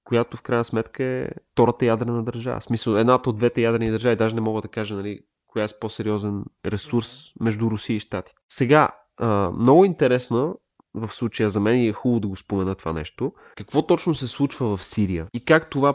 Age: 20-39